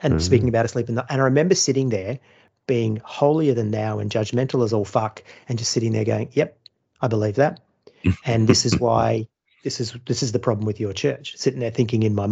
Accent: Australian